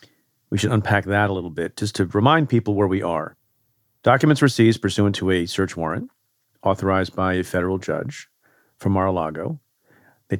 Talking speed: 175 wpm